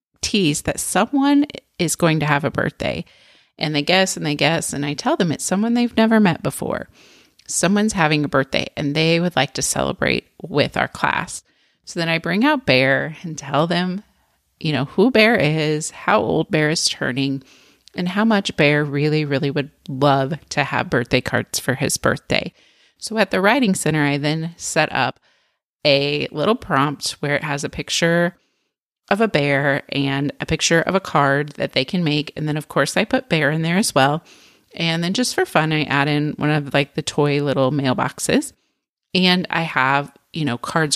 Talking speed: 195 wpm